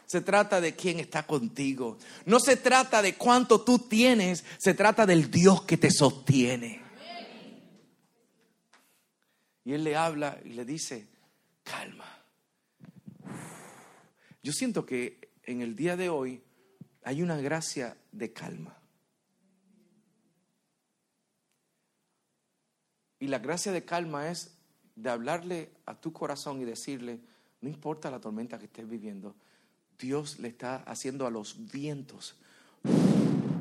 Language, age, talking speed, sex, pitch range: Spanish, 50-69, 120 wpm, male, 125-190 Hz